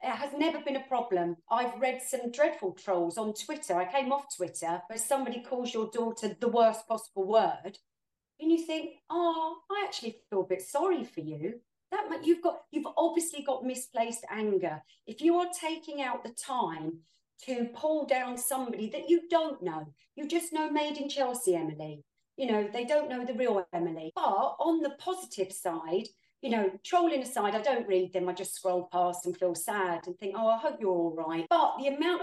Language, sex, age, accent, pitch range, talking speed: English, female, 40-59, British, 185-285 Hz, 200 wpm